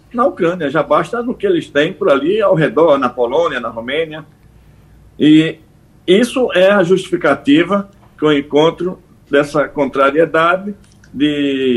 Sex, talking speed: male, 140 wpm